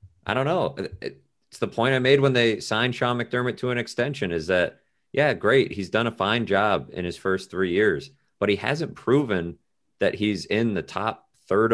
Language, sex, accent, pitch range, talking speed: English, male, American, 85-110 Hz, 205 wpm